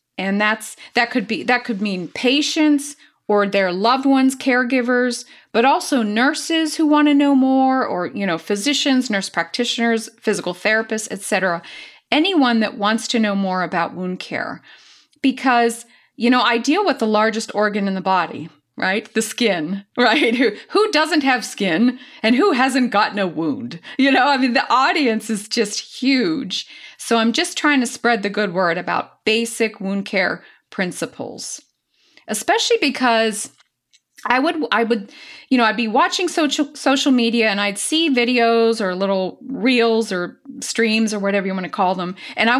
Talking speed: 170 wpm